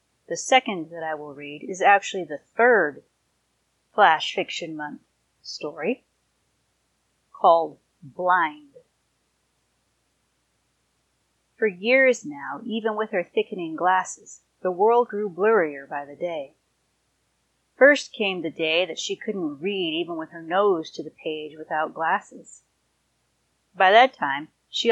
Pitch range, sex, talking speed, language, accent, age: 165-240 Hz, female, 125 wpm, English, American, 30-49